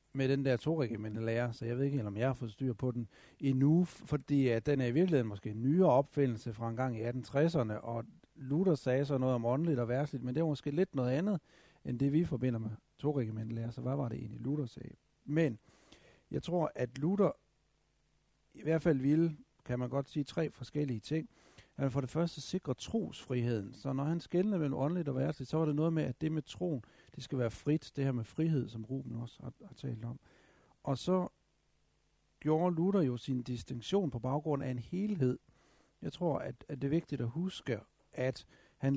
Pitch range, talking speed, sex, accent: 125-155 Hz, 215 wpm, male, native